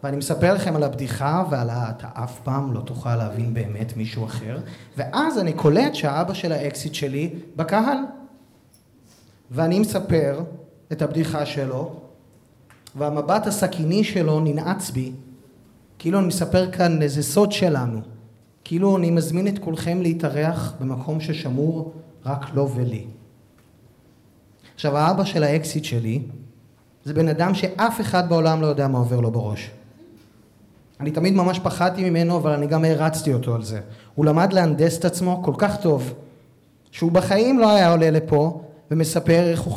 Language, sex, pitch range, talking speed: Hebrew, male, 120-165 Hz, 145 wpm